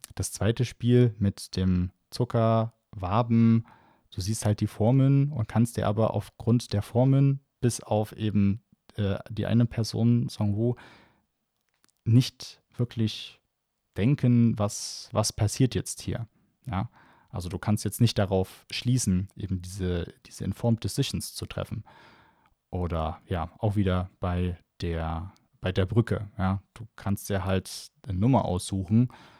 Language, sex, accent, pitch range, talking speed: German, male, German, 95-115 Hz, 140 wpm